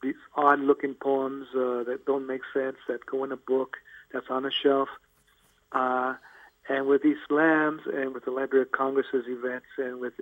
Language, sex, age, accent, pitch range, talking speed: English, male, 50-69, American, 130-140 Hz, 180 wpm